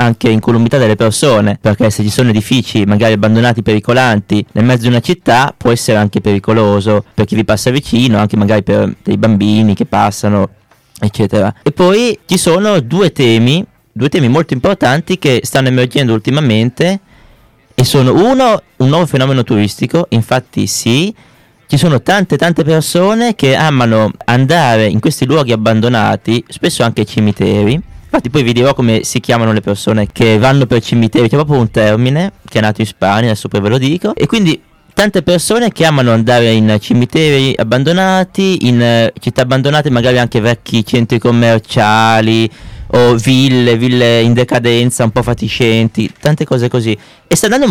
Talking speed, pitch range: 170 wpm, 110-145 Hz